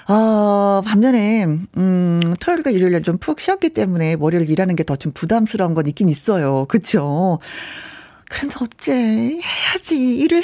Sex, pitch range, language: female, 170-255 Hz, Korean